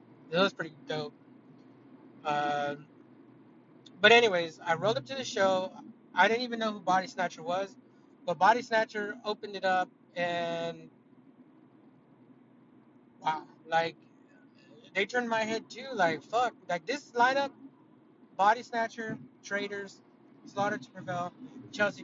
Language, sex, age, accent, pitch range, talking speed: English, male, 30-49, American, 175-250 Hz, 130 wpm